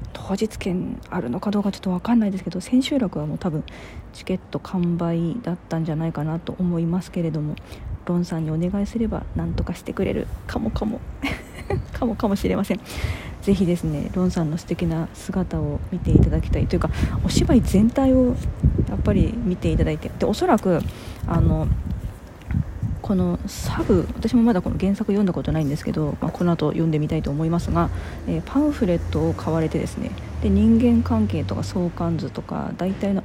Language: Japanese